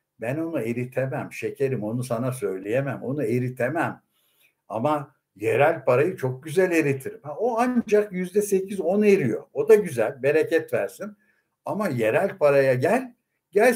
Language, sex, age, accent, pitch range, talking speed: Turkish, male, 60-79, native, 145-230 Hz, 125 wpm